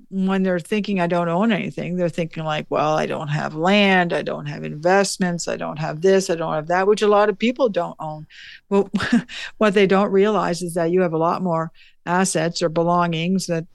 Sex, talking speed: female, 220 wpm